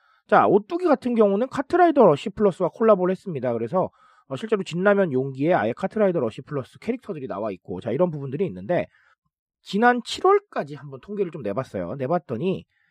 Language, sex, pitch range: Korean, male, 155-235 Hz